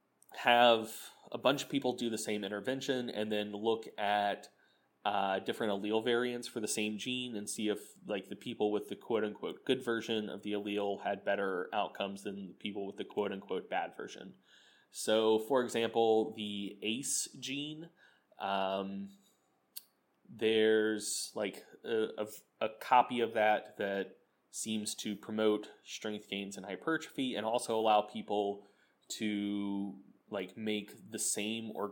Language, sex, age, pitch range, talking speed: English, male, 20-39, 105-120 Hz, 150 wpm